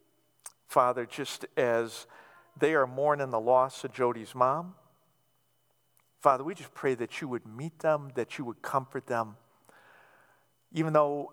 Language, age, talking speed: English, 50-69, 145 wpm